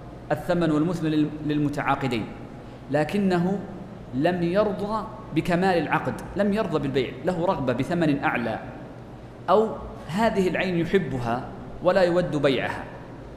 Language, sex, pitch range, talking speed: Arabic, male, 140-180 Hz, 100 wpm